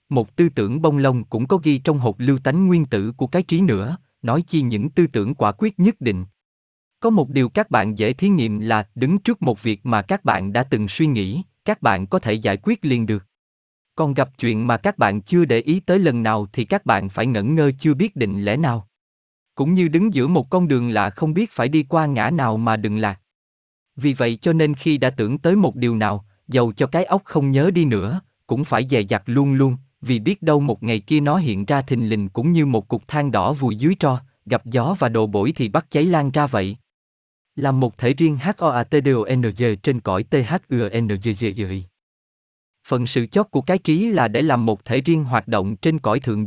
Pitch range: 110-160 Hz